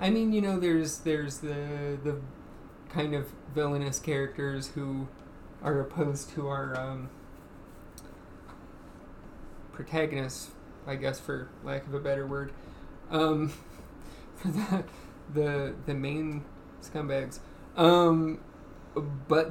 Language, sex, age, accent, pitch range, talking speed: English, male, 20-39, American, 140-160 Hz, 110 wpm